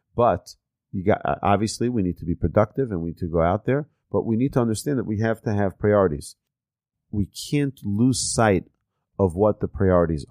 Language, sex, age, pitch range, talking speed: English, male, 40-59, 95-115 Hz, 190 wpm